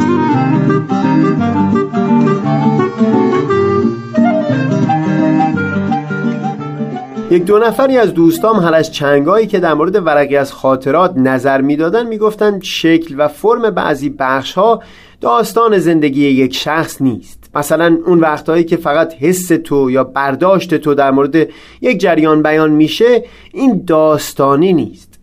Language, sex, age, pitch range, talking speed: Persian, male, 30-49, 140-190 Hz, 110 wpm